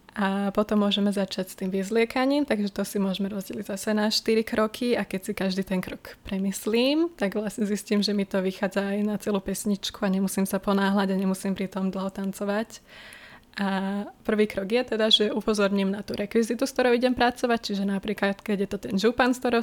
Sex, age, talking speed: female, 20-39, 200 wpm